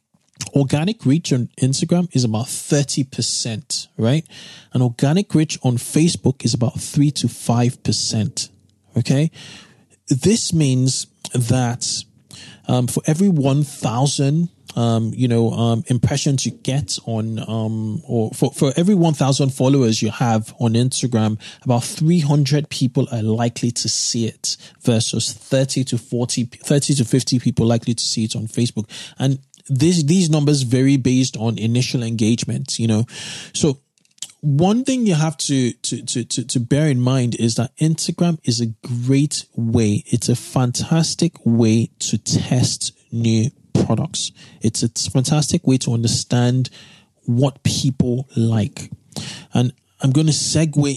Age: 20-39